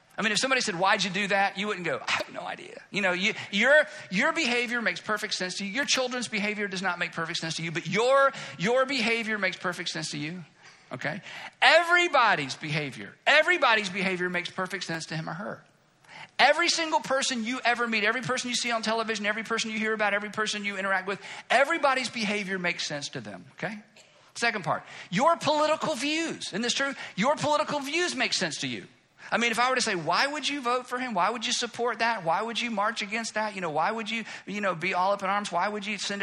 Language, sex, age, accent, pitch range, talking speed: English, male, 50-69, American, 180-245 Hz, 235 wpm